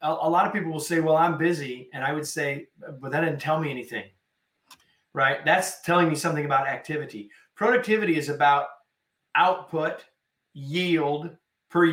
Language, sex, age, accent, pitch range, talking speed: English, male, 30-49, American, 125-165 Hz, 160 wpm